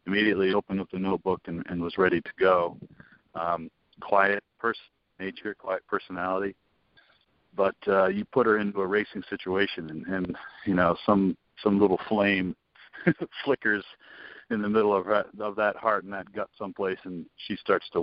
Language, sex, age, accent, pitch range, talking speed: English, male, 50-69, American, 90-115 Hz, 165 wpm